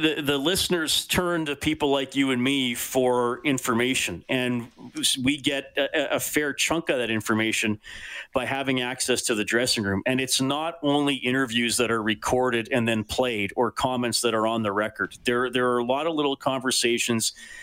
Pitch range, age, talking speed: 115-135 Hz, 40-59, 185 wpm